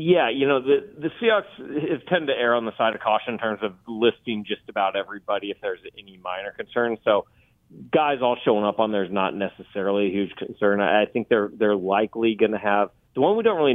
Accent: American